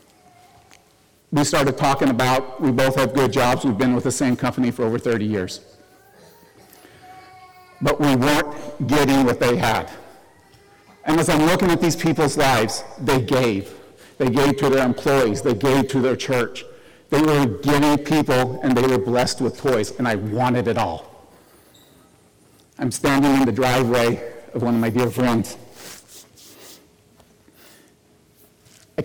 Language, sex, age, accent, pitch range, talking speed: English, male, 50-69, American, 120-145 Hz, 150 wpm